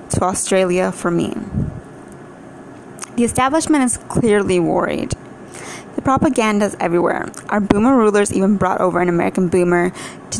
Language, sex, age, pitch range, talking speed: English, female, 20-39, 180-220 Hz, 135 wpm